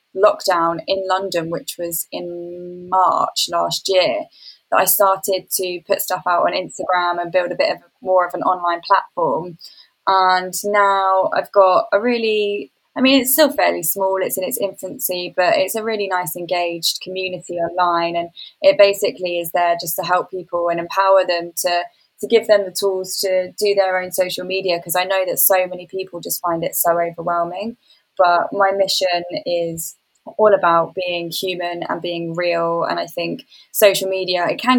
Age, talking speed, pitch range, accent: 10-29, 180 wpm, 175-195 Hz, British